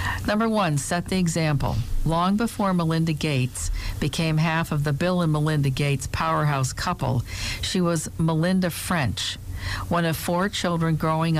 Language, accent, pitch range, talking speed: English, American, 130-170 Hz, 145 wpm